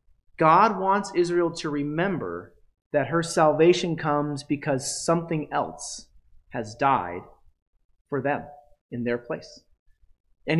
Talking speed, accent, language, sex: 115 wpm, American, English, male